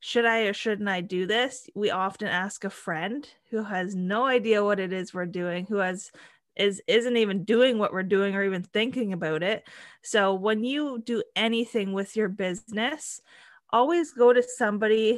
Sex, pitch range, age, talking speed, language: female, 185-220 Hz, 20-39, 185 wpm, English